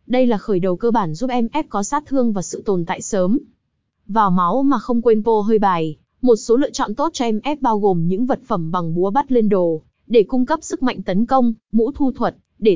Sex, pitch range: female, 200-255 Hz